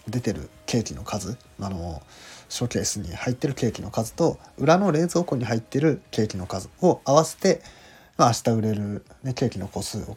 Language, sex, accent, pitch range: Japanese, male, native, 100-130 Hz